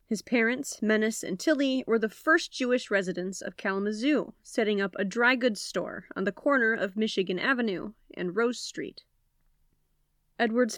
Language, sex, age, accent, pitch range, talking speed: English, female, 30-49, American, 195-255 Hz, 155 wpm